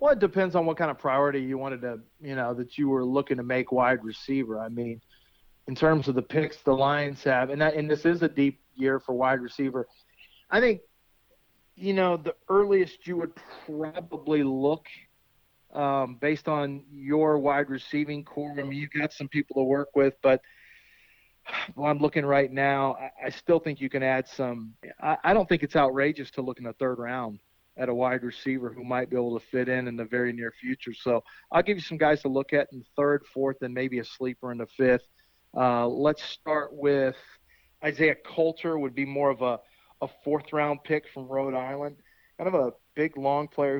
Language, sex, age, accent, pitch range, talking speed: English, male, 40-59, American, 125-145 Hz, 210 wpm